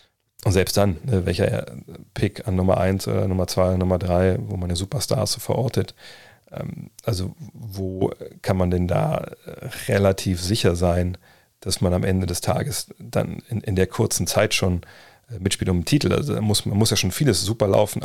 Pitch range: 95-120 Hz